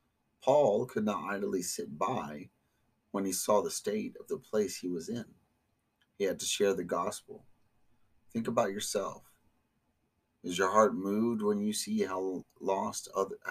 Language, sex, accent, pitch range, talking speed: English, male, American, 90-120 Hz, 160 wpm